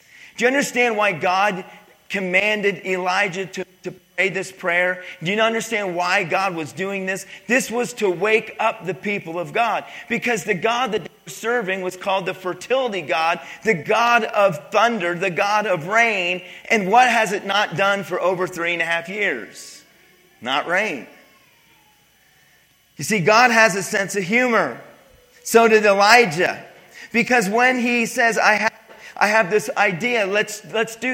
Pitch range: 185-230 Hz